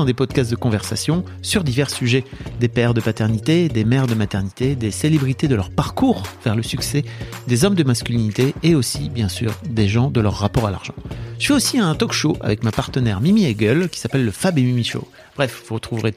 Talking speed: 225 wpm